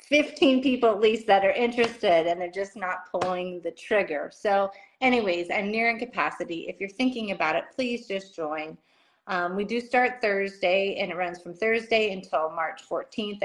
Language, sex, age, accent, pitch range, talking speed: English, female, 30-49, American, 175-225 Hz, 180 wpm